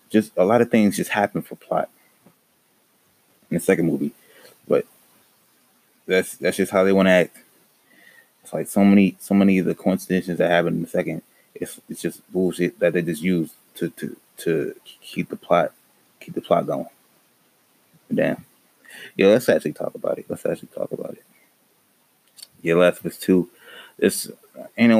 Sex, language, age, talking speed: male, English, 20-39, 175 wpm